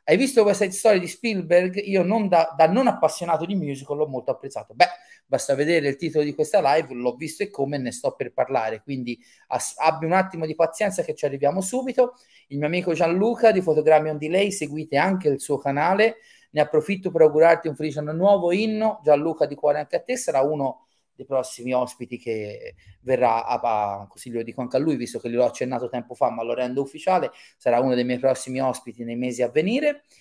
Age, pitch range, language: 30-49, 135-195 Hz, Italian